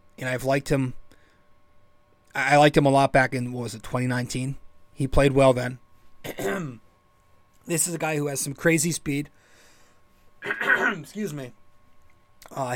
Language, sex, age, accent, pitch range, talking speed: English, male, 30-49, American, 110-150 Hz, 145 wpm